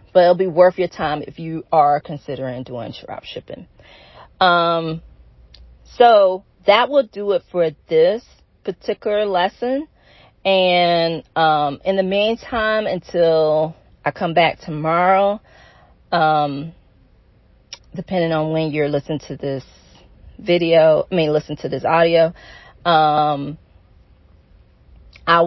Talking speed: 120 wpm